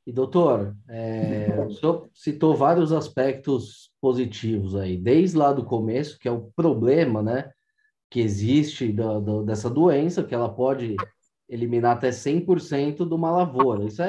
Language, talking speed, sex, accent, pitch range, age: Portuguese, 135 wpm, male, Brazilian, 125-180 Hz, 20-39